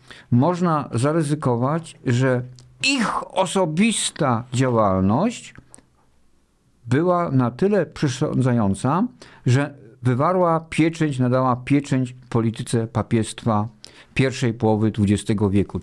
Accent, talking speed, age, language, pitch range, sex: native, 80 wpm, 50-69, Polish, 115-150 Hz, male